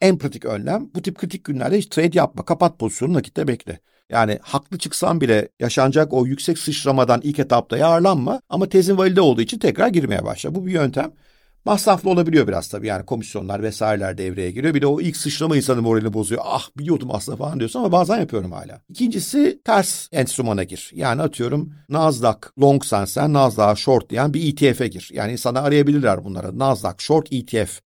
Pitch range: 110-160 Hz